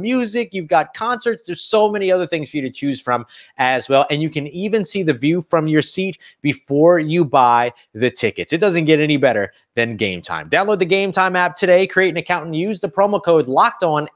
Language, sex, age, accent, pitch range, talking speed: English, male, 30-49, American, 135-190 Hz, 235 wpm